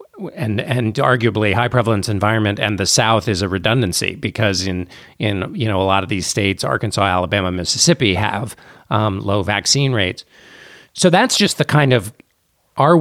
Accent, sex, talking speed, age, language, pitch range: American, male, 170 wpm, 40-59, English, 105-130 Hz